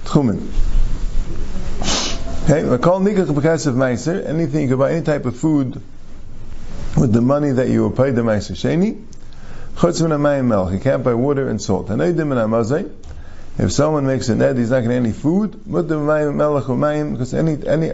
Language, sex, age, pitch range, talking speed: English, male, 50-69, 110-145 Hz, 185 wpm